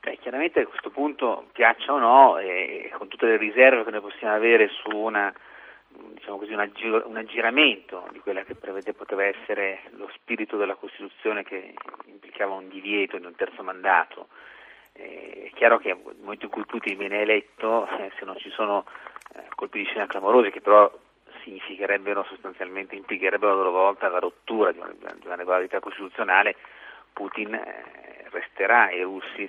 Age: 40-59